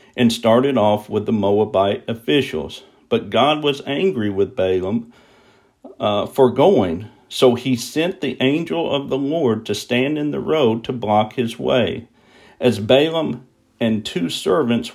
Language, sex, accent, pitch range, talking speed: English, male, American, 105-130 Hz, 155 wpm